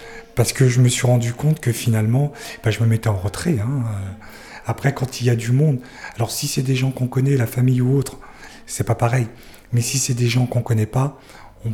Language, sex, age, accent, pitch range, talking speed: French, male, 40-59, French, 115-135 Hz, 235 wpm